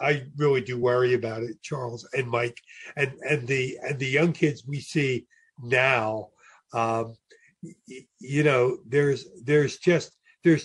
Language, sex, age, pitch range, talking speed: English, male, 50-69, 135-165 Hz, 150 wpm